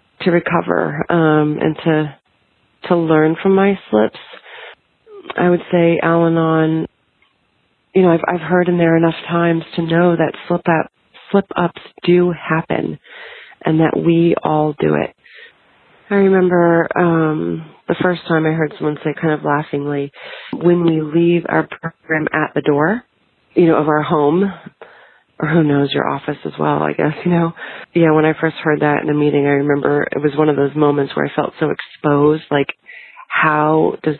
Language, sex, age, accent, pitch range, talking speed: English, female, 30-49, American, 150-170 Hz, 175 wpm